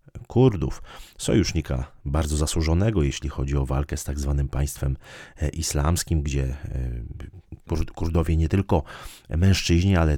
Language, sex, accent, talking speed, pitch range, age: Polish, male, native, 110 wpm, 70-90 Hz, 30-49